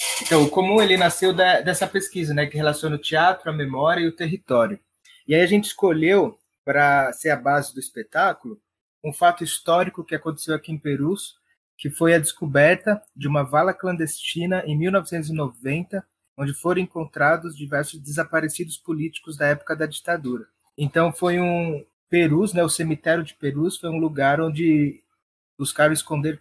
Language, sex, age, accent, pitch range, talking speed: Portuguese, male, 20-39, Brazilian, 140-170 Hz, 165 wpm